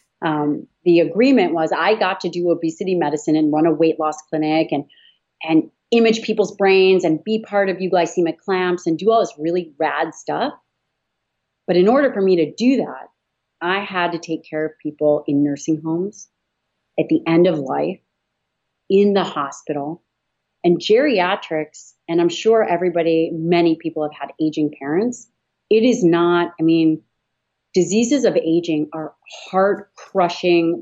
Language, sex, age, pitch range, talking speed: English, female, 30-49, 160-200 Hz, 160 wpm